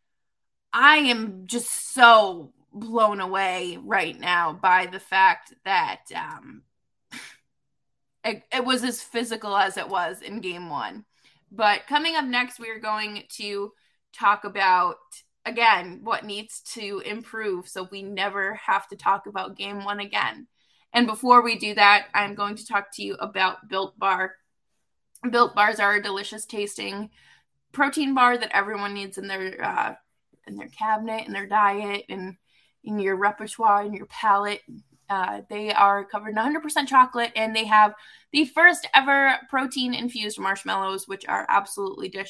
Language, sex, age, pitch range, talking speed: English, female, 20-39, 195-235 Hz, 155 wpm